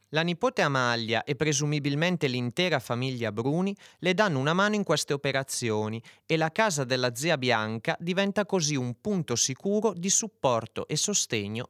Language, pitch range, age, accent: Italian, 120-180 Hz, 30-49, native